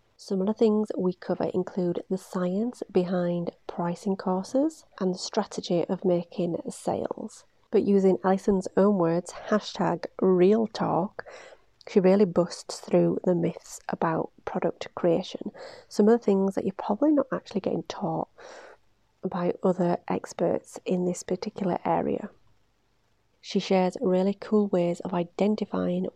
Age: 30-49